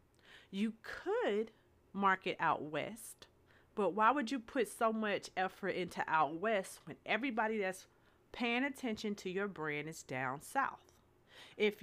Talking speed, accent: 140 wpm, American